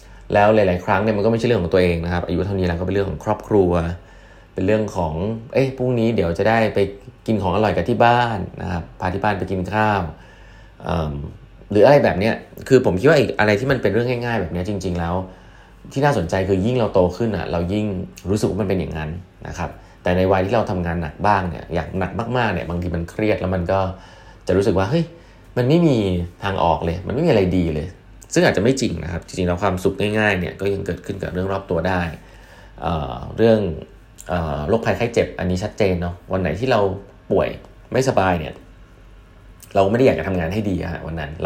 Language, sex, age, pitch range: Thai, male, 20-39, 90-110 Hz